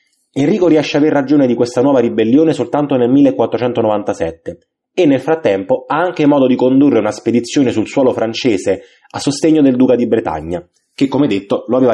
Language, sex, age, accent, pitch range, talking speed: Italian, male, 20-39, native, 115-150 Hz, 180 wpm